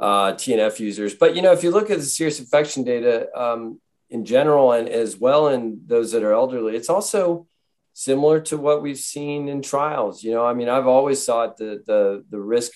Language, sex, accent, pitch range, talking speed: English, male, American, 105-130 Hz, 210 wpm